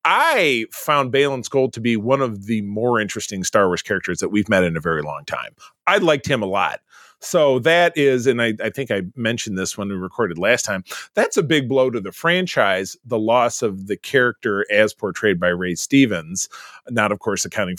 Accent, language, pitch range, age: American, English, 110-160 Hz, 30-49